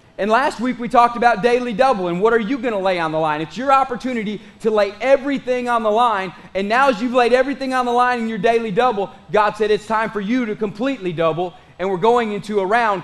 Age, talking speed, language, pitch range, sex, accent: 30-49, 255 wpm, English, 210-260 Hz, male, American